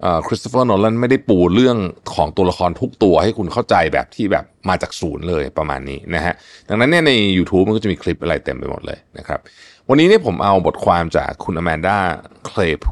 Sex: male